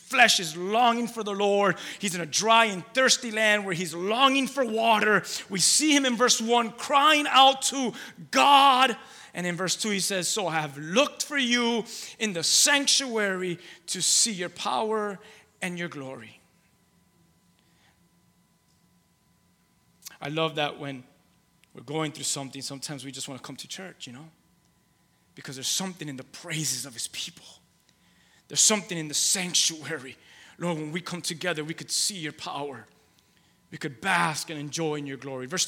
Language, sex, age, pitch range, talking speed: English, male, 30-49, 150-215 Hz, 170 wpm